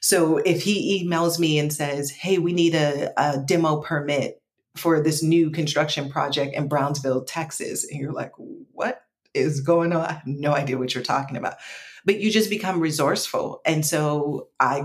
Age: 30-49